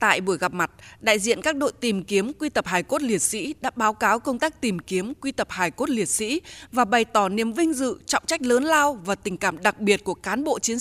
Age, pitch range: 20-39, 205-285 Hz